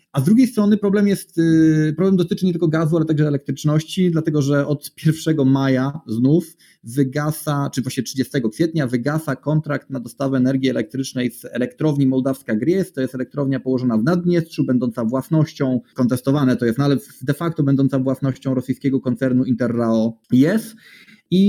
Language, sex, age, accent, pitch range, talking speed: Polish, male, 20-39, native, 125-160 Hz, 155 wpm